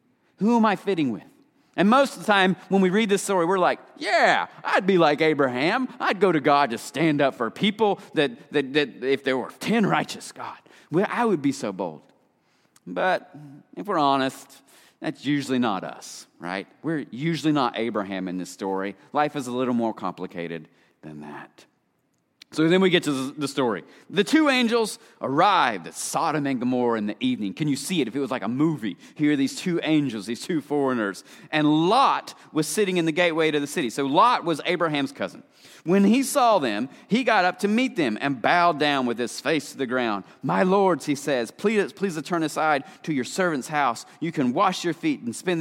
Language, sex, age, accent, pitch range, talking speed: English, male, 30-49, American, 130-190 Hz, 210 wpm